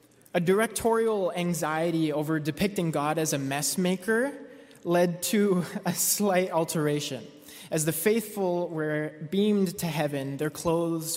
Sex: male